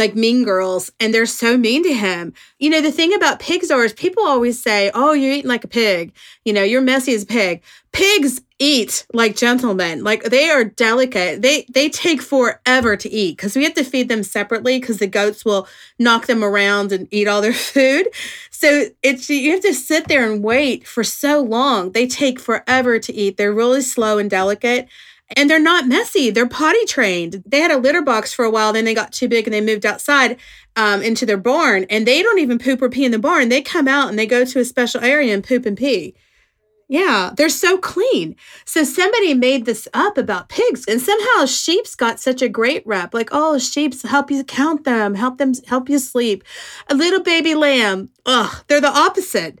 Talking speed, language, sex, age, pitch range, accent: 215 wpm, English, female, 30-49, 220-290 Hz, American